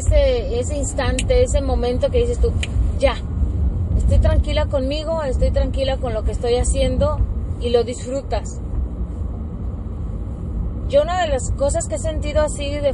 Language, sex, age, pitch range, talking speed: Spanish, female, 30-49, 80-100 Hz, 150 wpm